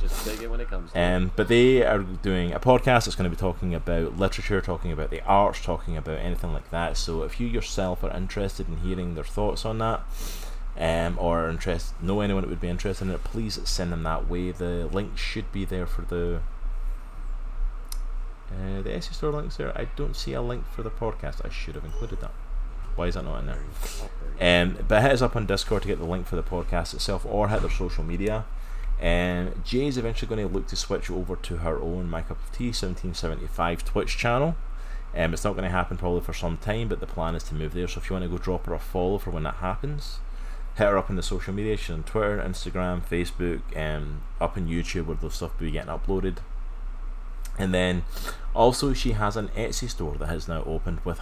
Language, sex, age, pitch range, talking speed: English, male, 20-39, 85-105 Hz, 225 wpm